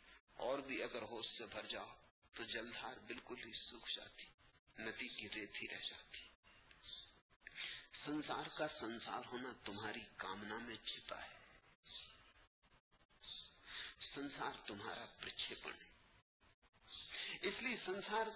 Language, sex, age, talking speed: English, male, 50-69, 110 wpm